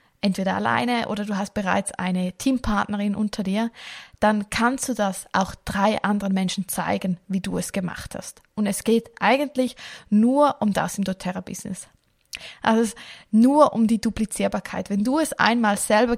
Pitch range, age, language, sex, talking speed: 190-230 Hz, 20-39, German, female, 165 wpm